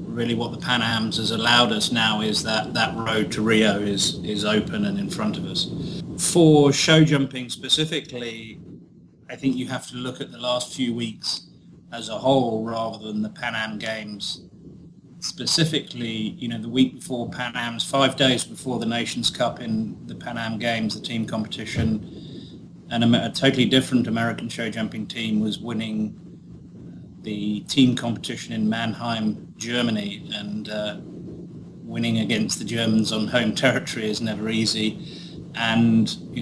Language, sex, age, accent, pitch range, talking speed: English, male, 30-49, British, 110-130 Hz, 165 wpm